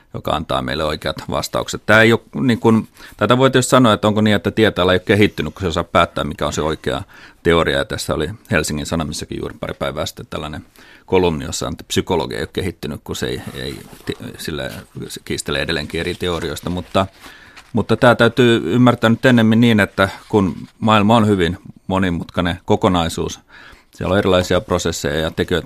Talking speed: 180 wpm